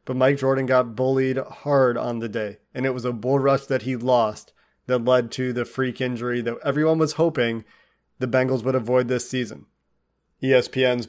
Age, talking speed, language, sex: 30-49, 190 wpm, English, male